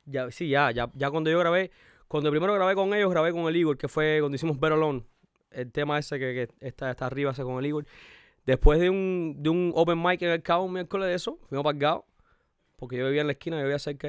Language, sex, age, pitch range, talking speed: Spanish, male, 20-39, 130-165 Hz, 245 wpm